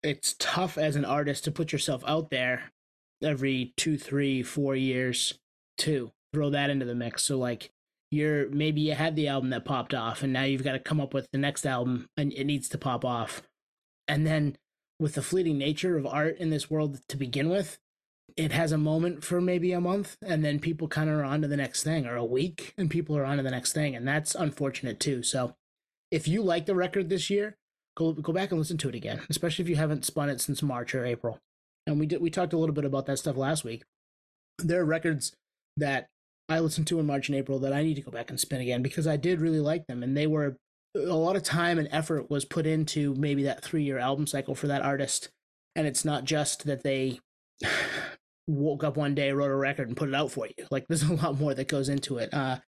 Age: 20-39